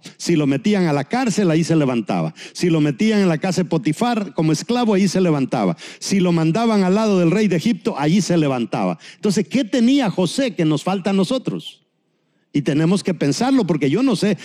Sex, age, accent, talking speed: male, 50-69, Mexican, 210 wpm